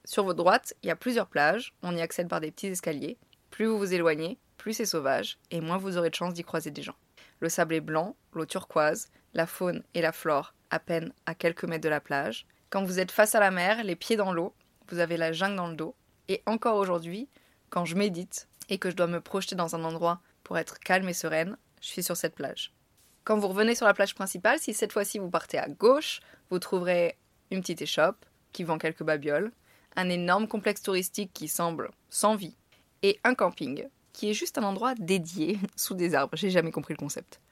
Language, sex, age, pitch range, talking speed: French, female, 20-39, 165-210 Hz, 225 wpm